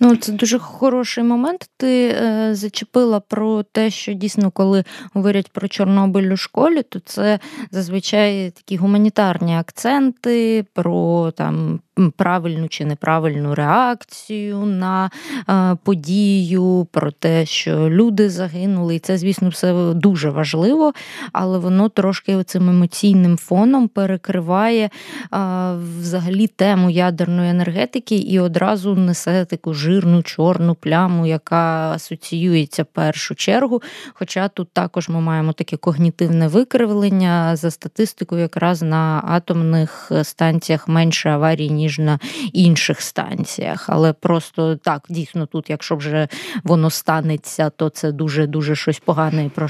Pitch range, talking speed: 165-205 Hz, 125 wpm